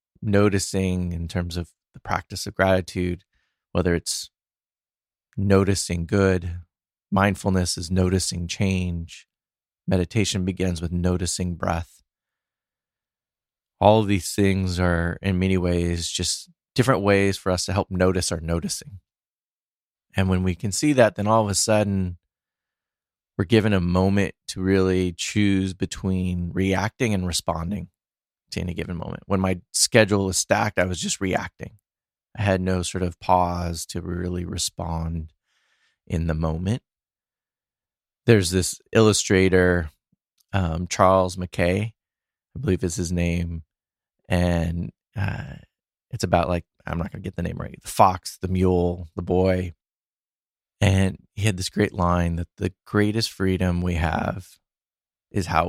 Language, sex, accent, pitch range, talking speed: English, male, American, 85-100 Hz, 140 wpm